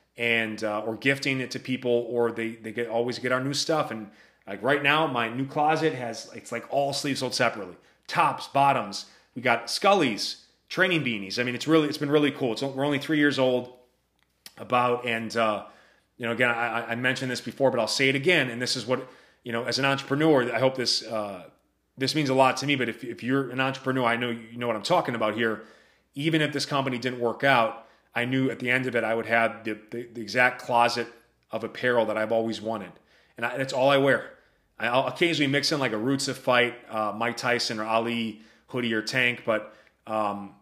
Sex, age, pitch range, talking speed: male, 30-49, 115-130 Hz, 230 wpm